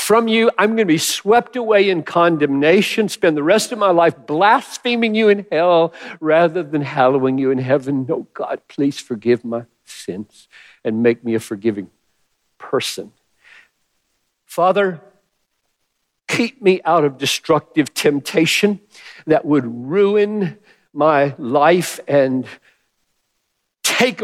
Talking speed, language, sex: 130 wpm, English, male